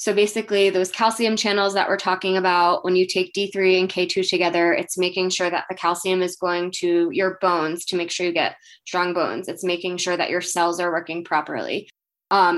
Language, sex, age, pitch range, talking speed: English, female, 20-39, 180-205 Hz, 210 wpm